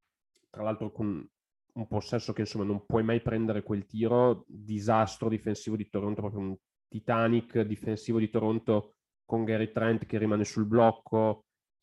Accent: native